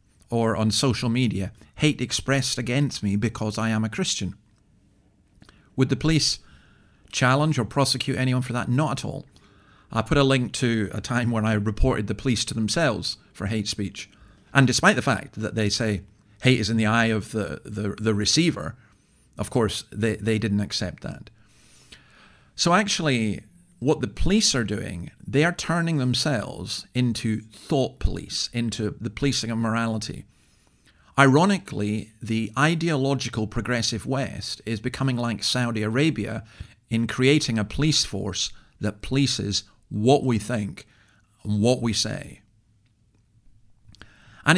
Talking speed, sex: 150 wpm, male